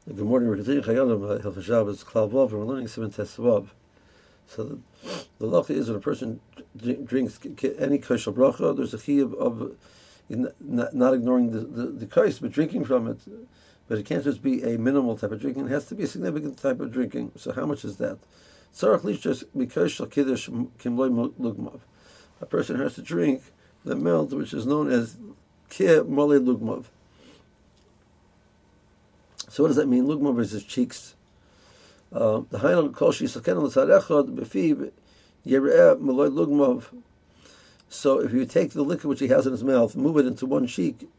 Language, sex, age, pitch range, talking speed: English, male, 60-79, 115-145 Hz, 135 wpm